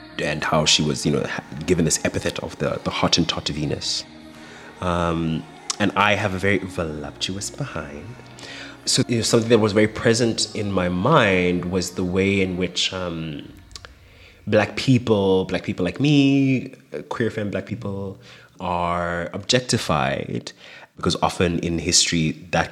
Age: 30-49